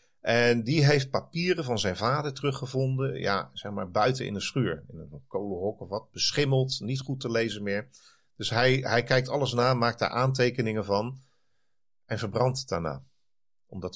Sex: male